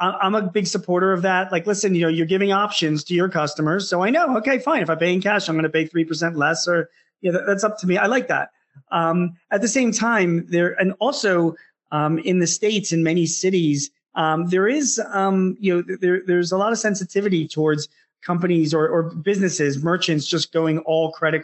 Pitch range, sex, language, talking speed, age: 150-185 Hz, male, English, 225 wpm, 30-49